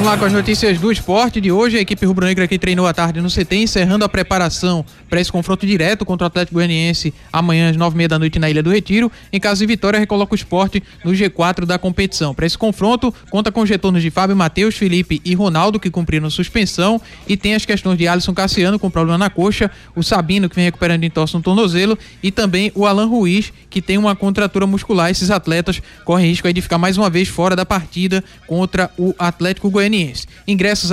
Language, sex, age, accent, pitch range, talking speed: Portuguese, male, 20-39, Brazilian, 175-200 Hz, 225 wpm